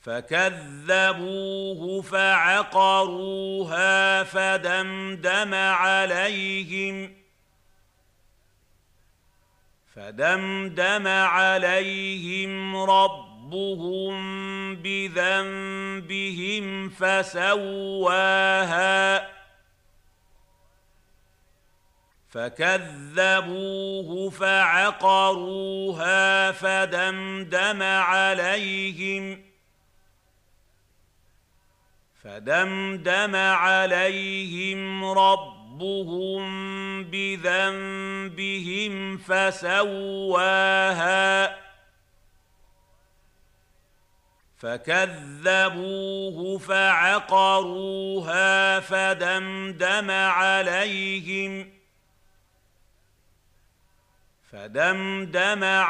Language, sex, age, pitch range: Arabic, male, 50-69, 140-195 Hz